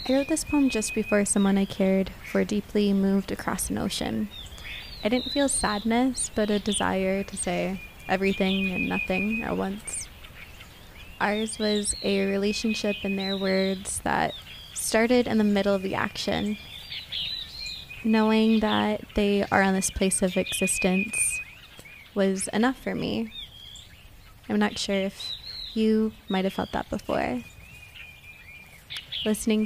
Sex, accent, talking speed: female, American, 140 wpm